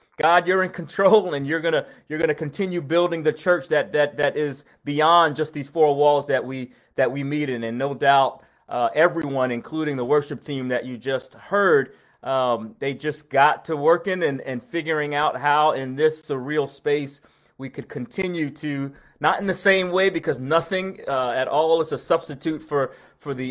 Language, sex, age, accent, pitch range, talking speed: English, male, 30-49, American, 130-165 Hz, 195 wpm